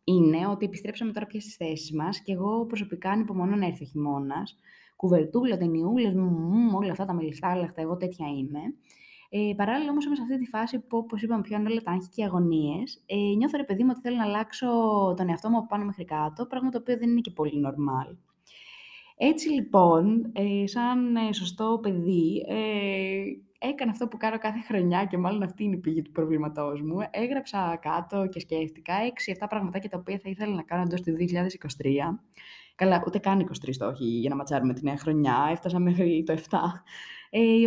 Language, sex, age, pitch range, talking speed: Greek, female, 20-39, 165-220 Hz, 195 wpm